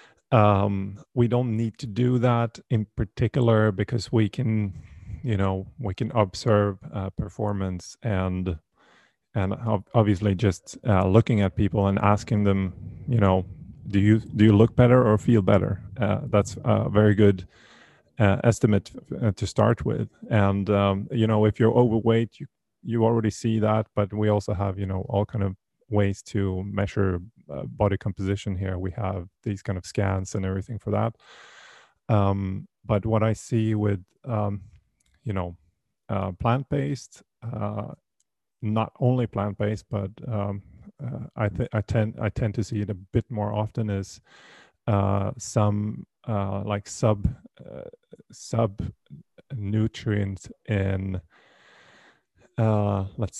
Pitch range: 100-115 Hz